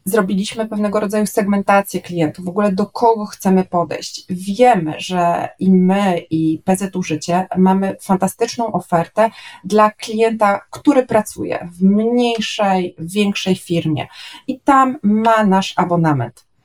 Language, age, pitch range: Polish, 30-49, 180-230 Hz